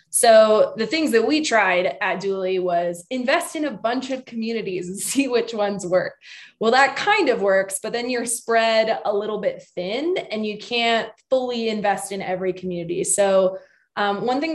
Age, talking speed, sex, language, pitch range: 20-39, 185 wpm, female, English, 185-230 Hz